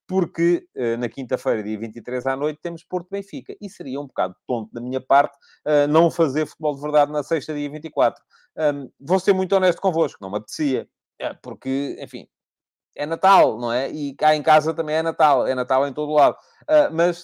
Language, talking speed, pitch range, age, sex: Portuguese, 185 wpm, 135-175 Hz, 30-49, male